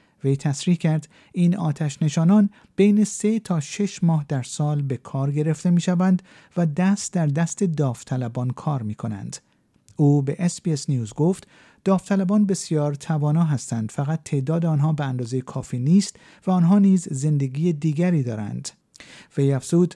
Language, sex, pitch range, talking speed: Persian, male, 135-175 Hz, 150 wpm